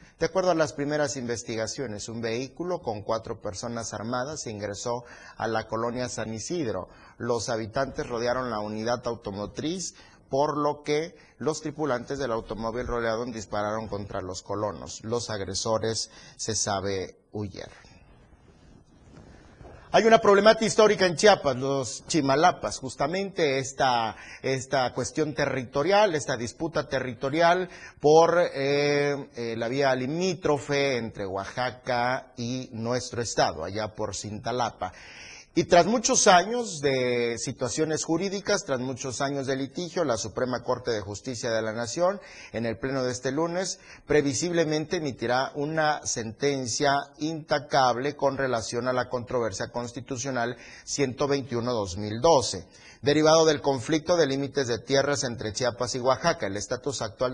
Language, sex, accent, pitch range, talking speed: Spanish, male, Mexican, 115-145 Hz, 130 wpm